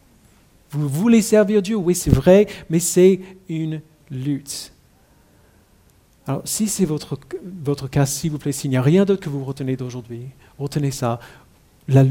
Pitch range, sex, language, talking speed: 155-220 Hz, male, French, 160 wpm